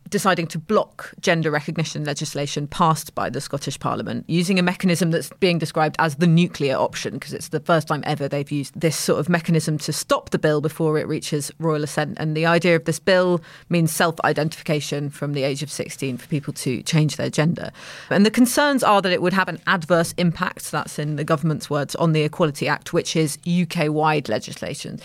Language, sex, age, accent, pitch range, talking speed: English, female, 30-49, British, 155-185 Hz, 205 wpm